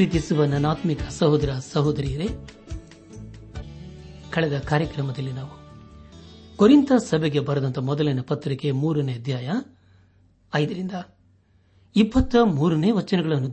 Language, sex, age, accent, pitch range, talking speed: Kannada, male, 60-79, native, 95-155 Hz, 65 wpm